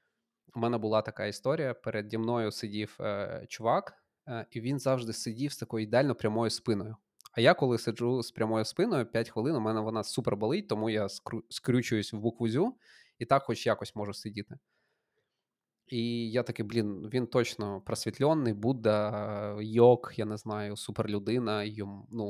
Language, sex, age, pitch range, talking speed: Ukrainian, male, 20-39, 105-120 Hz, 170 wpm